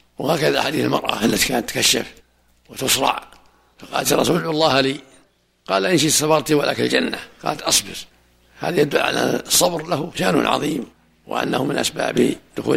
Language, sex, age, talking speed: Arabic, male, 60-79, 140 wpm